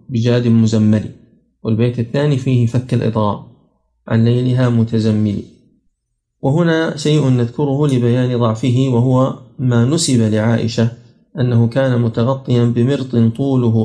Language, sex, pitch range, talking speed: Arabic, male, 115-135 Hz, 105 wpm